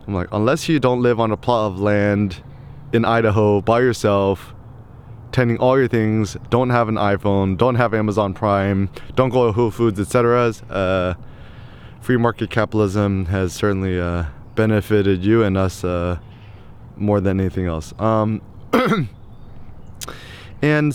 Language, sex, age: English, male, 20-39